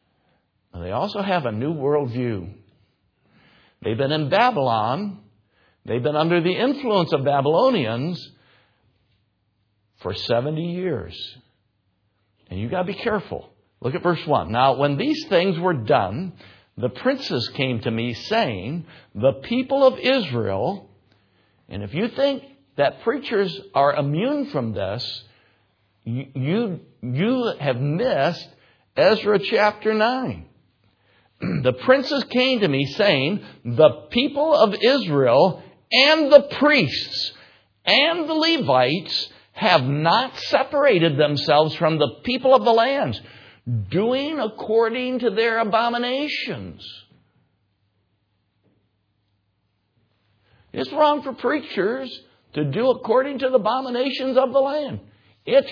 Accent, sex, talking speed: American, male, 115 wpm